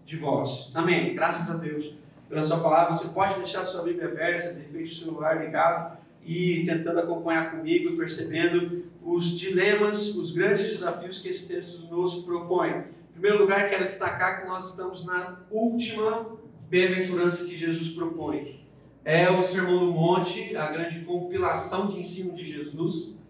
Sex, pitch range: male, 165-195 Hz